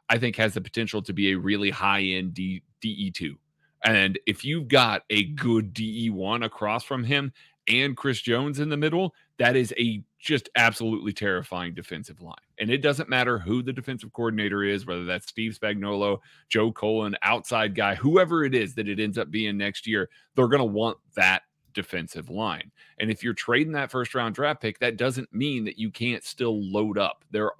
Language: English